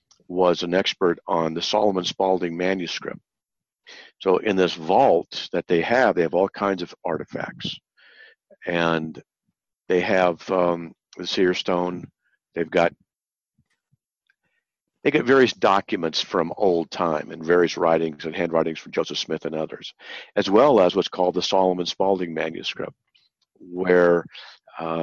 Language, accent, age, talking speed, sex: English, American, 50-69, 140 wpm, male